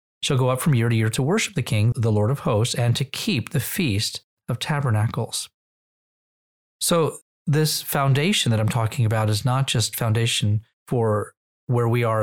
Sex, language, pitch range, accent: male, English, 110-135 Hz, American